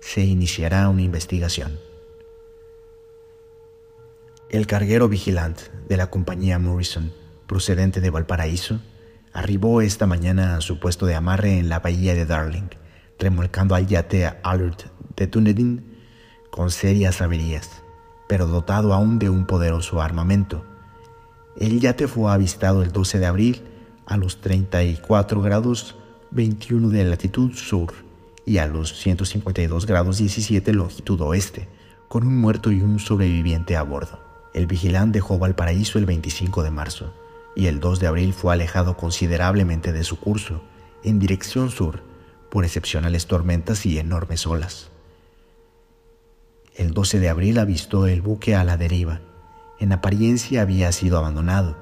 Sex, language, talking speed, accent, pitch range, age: male, Spanish, 135 wpm, Mexican, 85-105 Hz, 40-59